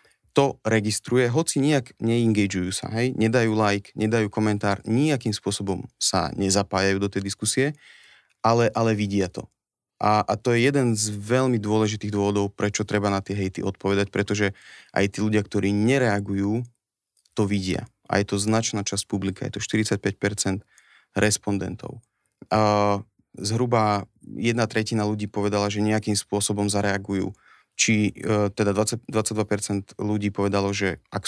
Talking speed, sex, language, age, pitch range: 140 wpm, male, Slovak, 30-49, 100-110 Hz